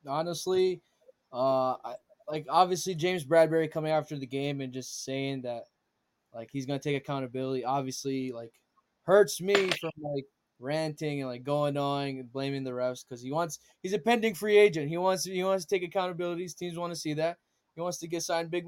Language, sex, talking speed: English, male, 205 wpm